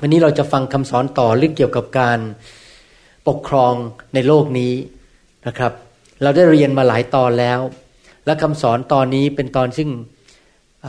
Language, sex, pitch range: Thai, male, 120-150 Hz